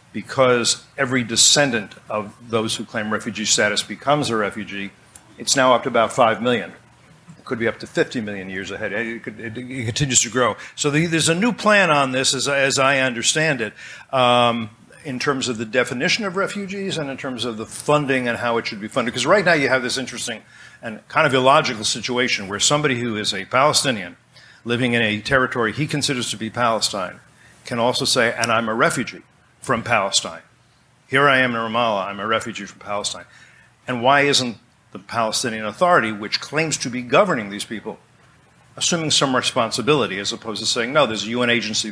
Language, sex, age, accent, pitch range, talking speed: English, male, 50-69, American, 110-140 Hz, 195 wpm